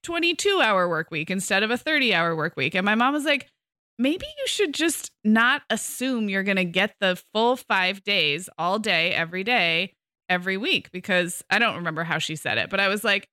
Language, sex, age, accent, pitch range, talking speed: English, female, 20-39, American, 175-235 Hz, 215 wpm